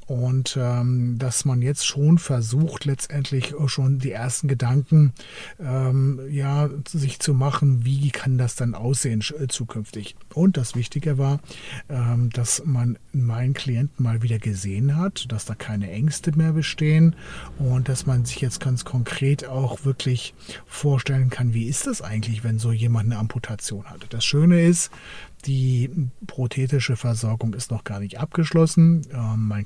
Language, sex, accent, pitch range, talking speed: German, male, German, 115-140 Hz, 150 wpm